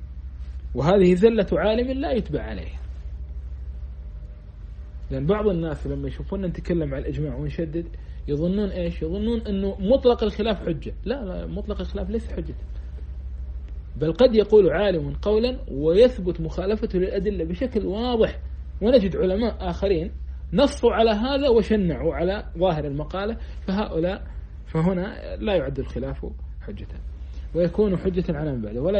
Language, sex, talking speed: Arabic, male, 125 wpm